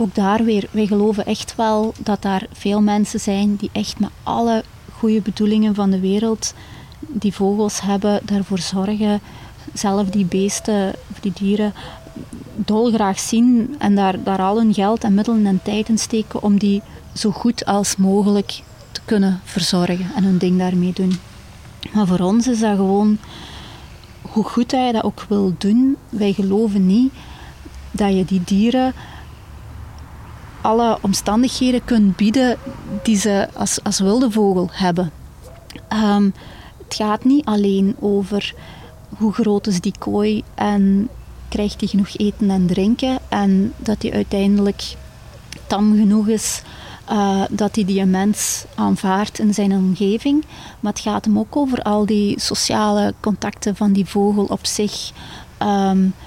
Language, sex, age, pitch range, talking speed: Dutch, female, 30-49, 195-215 Hz, 150 wpm